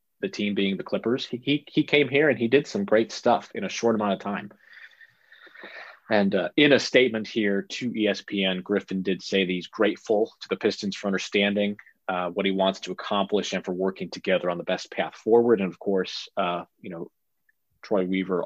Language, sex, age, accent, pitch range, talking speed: English, male, 30-49, American, 95-125 Hz, 210 wpm